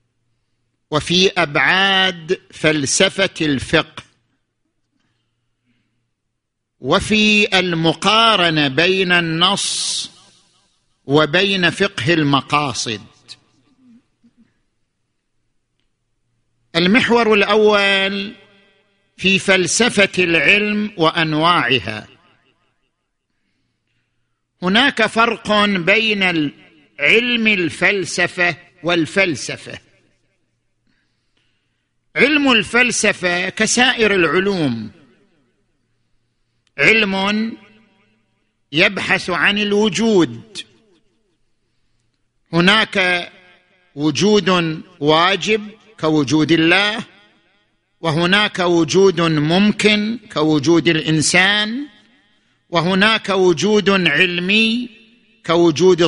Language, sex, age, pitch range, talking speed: Arabic, male, 50-69, 150-205 Hz, 50 wpm